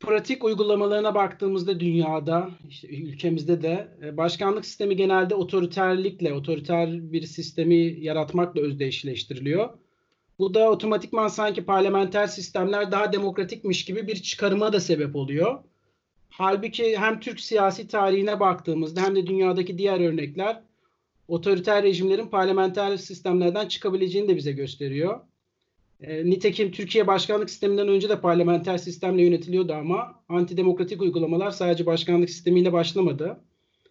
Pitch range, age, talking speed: 175-210 Hz, 40-59, 115 wpm